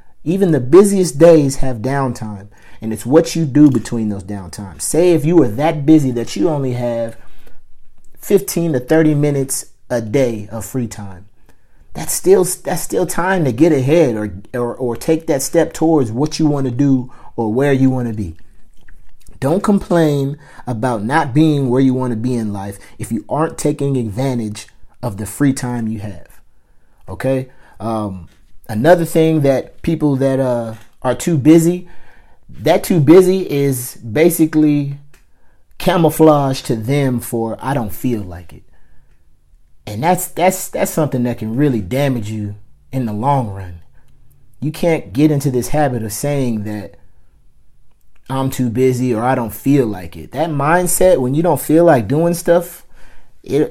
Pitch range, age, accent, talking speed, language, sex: 110-150 Hz, 30-49, American, 165 wpm, English, male